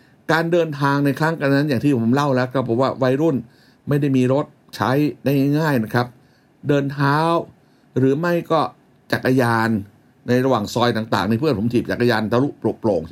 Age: 60-79